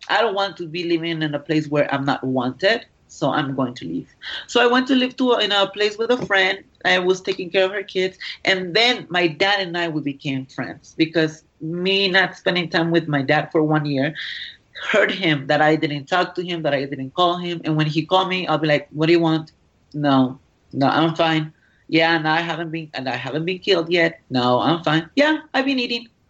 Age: 30-49